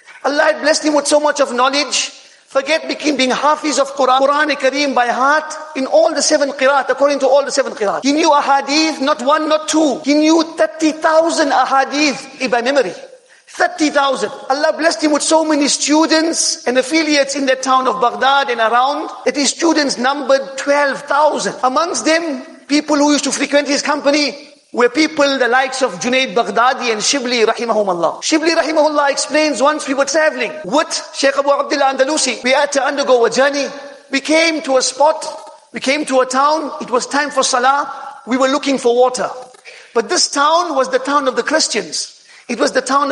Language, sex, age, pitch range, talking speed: English, male, 50-69, 255-300 Hz, 190 wpm